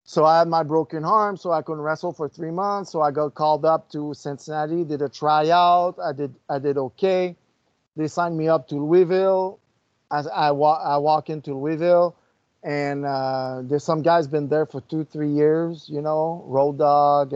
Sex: male